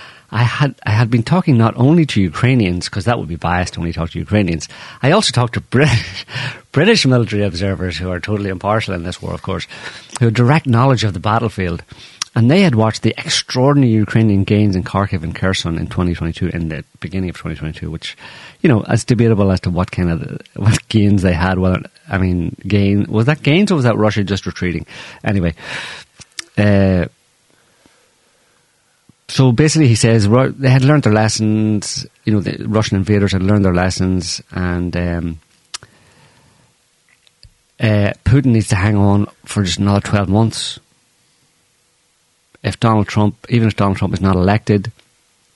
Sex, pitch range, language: male, 85-110 Hz, English